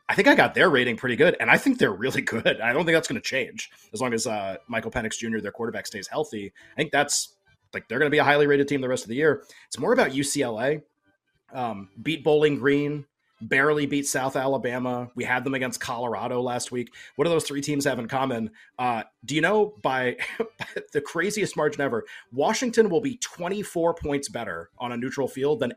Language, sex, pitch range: English, male, 125-155 Hz